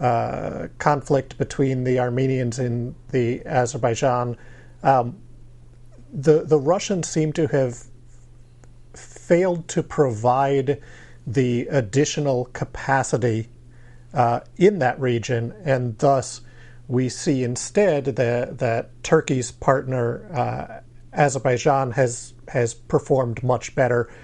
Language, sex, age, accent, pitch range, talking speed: English, male, 50-69, American, 120-140 Hz, 100 wpm